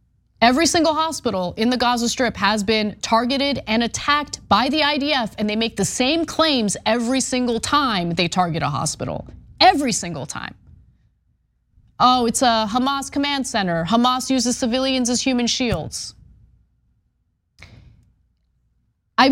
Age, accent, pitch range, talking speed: 30-49, American, 205-275 Hz, 135 wpm